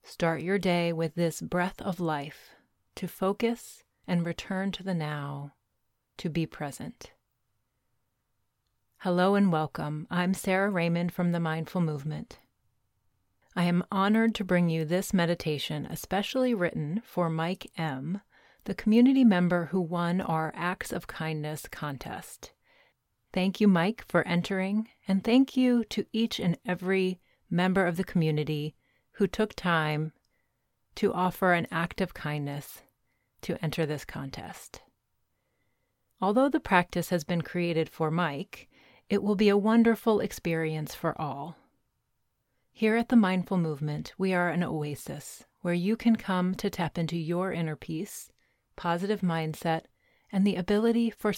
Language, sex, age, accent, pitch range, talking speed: English, female, 30-49, American, 150-190 Hz, 140 wpm